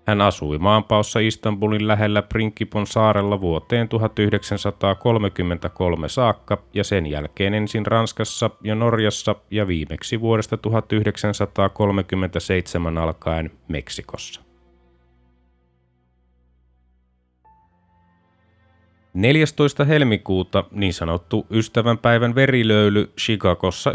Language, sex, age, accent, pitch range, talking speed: Finnish, male, 30-49, native, 90-110 Hz, 75 wpm